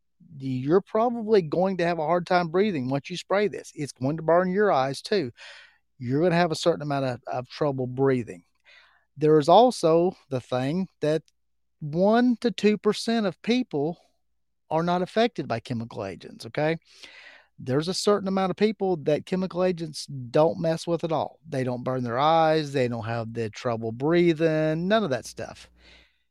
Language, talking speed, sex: English, 180 wpm, male